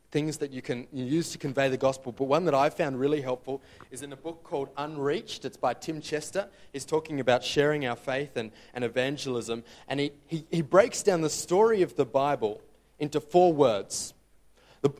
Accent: Australian